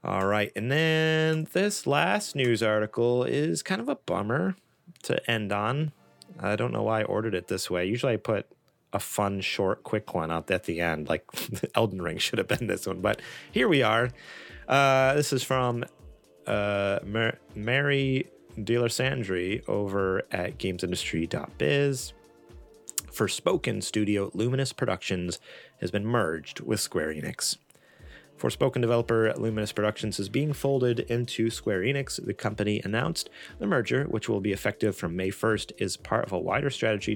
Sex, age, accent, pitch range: male, 30-49, American, 95-125 Hz